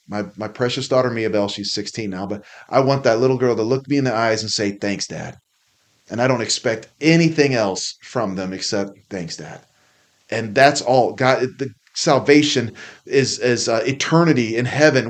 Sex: male